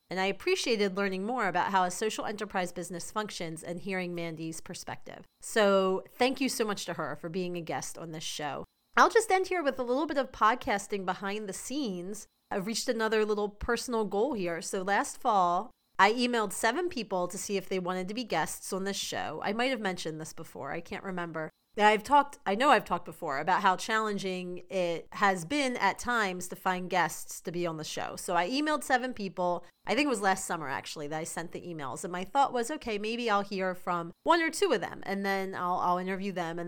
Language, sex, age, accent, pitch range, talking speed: English, female, 30-49, American, 185-240 Hz, 225 wpm